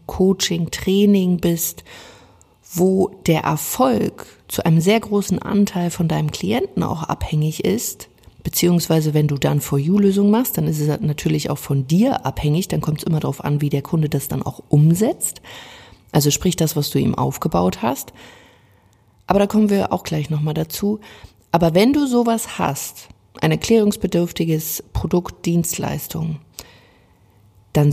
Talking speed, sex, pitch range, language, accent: 150 wpm, female, 155-190 Hz, German, German